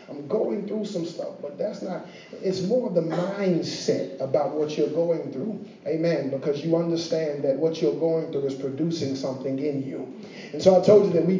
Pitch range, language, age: 155-195 Hz, English, 40-59